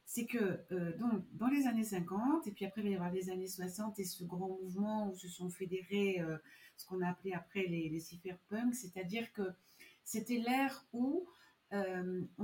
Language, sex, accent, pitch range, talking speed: French, female, French, 180-225 Hz, 200 wpm